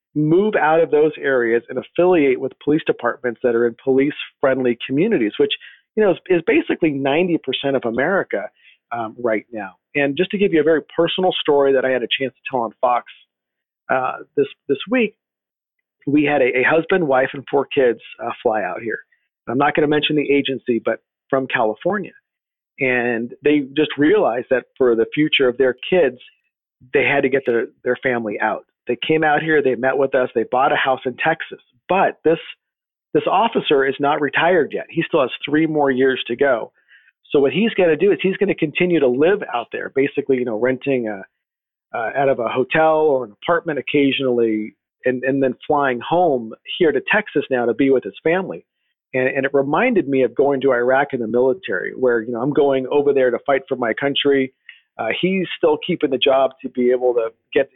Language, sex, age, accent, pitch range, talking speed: English, male, 40-59, American, 130-160 Hz, 210 wpm